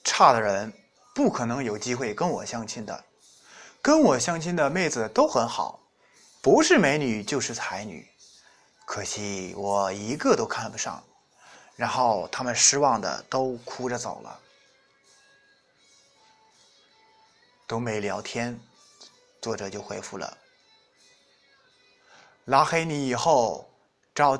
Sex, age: male, 20-39